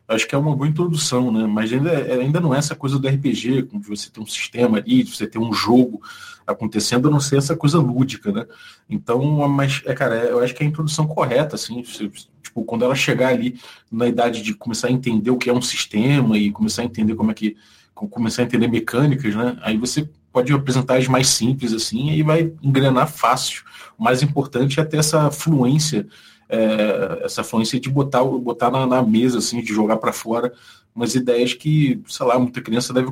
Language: Portuguese